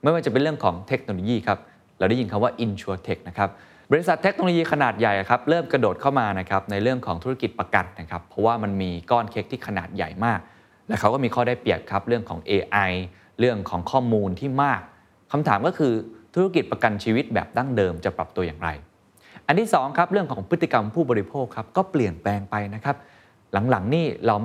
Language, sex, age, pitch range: Thai, male, 20-39, 100-135 Hz